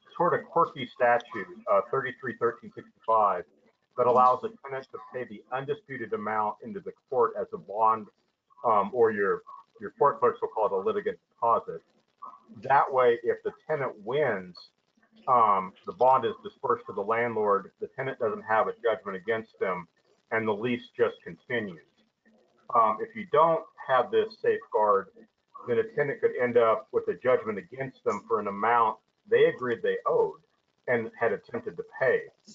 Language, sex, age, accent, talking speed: English, male, 50-69, American, 165 wpm